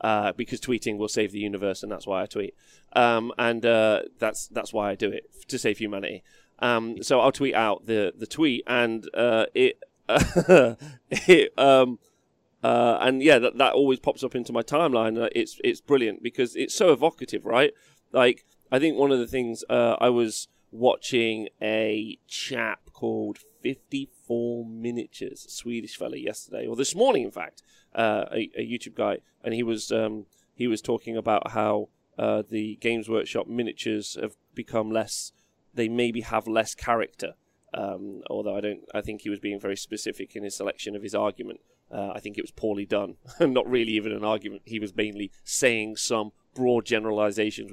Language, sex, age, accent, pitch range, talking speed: English, male, 30-49, British, 105-125 Hz, 180 wpm